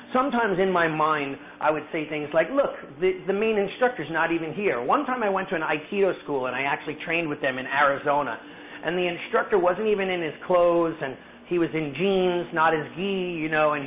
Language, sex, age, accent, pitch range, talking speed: English, male, 40-59, American, 150-190 Hz, 225 wpm